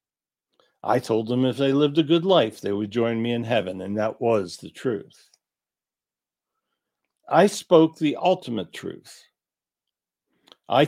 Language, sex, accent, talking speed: English, male, American, 145 wpm